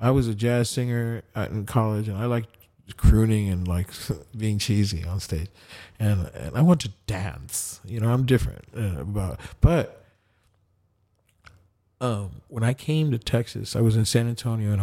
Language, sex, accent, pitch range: English, male, American, 95-115 Hz